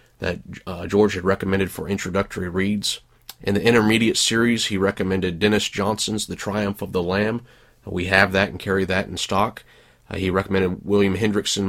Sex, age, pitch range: male, 30-49, 95-105 Hz